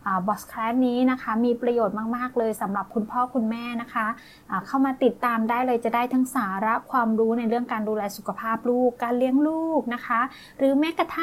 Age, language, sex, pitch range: 20-39, Thai, female, 220-255 Hz